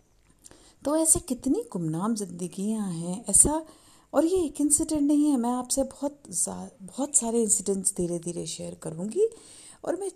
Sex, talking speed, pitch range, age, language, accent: female, 150 wpm, 195-285 Hz, 50-69, Hindi, native